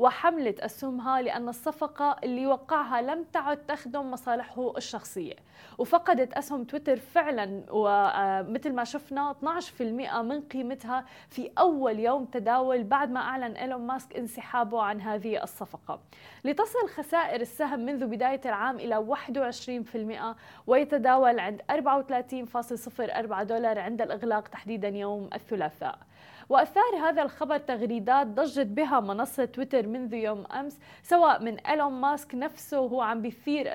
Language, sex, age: Arabic, female, 20-39